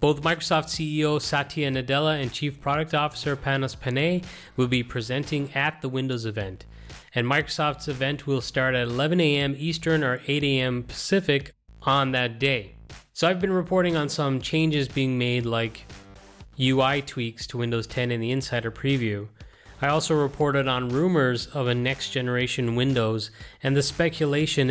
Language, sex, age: English, male, 30-49